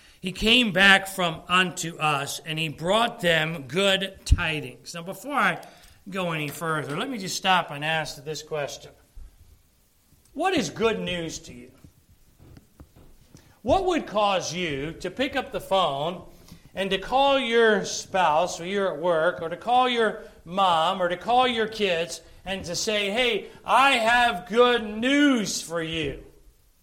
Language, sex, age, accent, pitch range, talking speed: English, male, 40-59, American, 165-230 Hz, 155 wpm